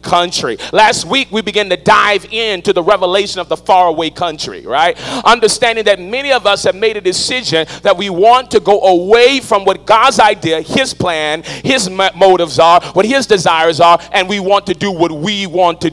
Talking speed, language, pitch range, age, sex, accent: 195 wpm, English, 180-235 Hz, 40-59, male, American